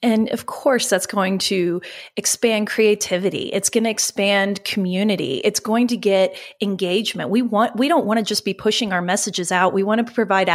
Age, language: 30-49, English